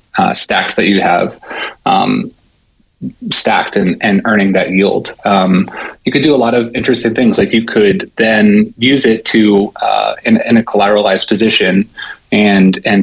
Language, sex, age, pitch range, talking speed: English, male, 20-39, 95-120 Hz, 165 wpm